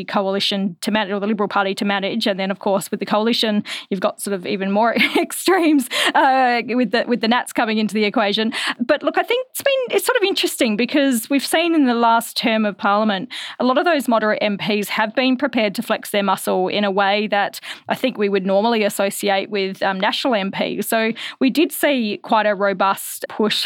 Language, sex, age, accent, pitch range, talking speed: English, female, 20-39, Australian, 205-250 Hz, 220 wpm